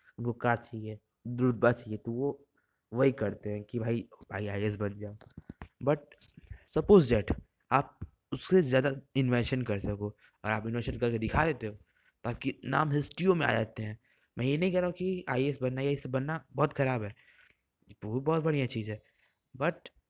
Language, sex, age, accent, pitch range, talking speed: Hindi, male, 20-39, native, 115-140 Hz, 185 wpm